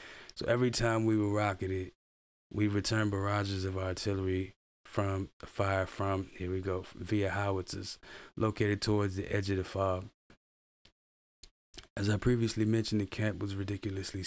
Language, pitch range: English, 95-105 Hz